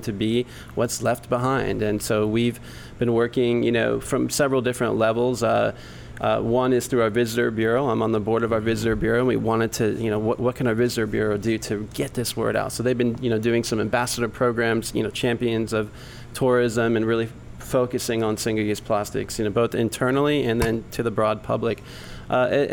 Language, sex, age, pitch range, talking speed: English, male, 20-39, 110-125 Hz, 215 wpm